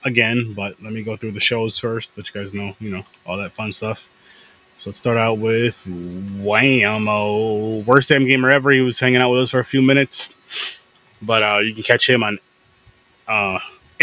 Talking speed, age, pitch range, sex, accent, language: 200 wpm, 20-39, 110-130 Hz, male, American, English